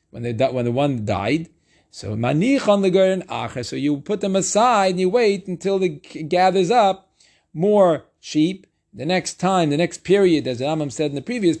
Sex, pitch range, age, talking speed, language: male, 145-195 Hz, 40-59, 195 wpm, English